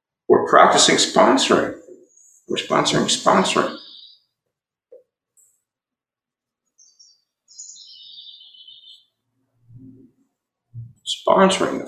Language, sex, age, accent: English, male, 60-79, American